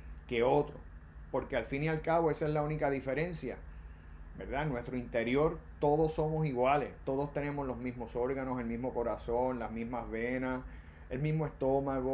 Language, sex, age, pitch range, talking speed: Spanish, male, 30-49, 115-170 Hz, 170 wpm